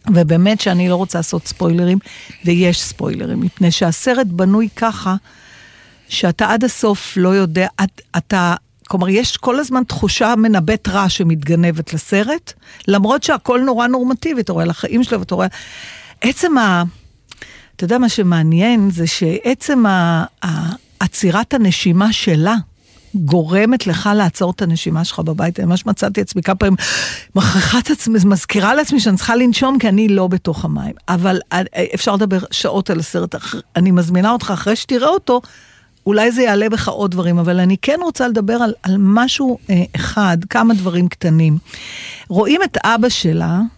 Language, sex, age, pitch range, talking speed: Hebrew, female, 50-69, 175-230 Hz, 150 wpm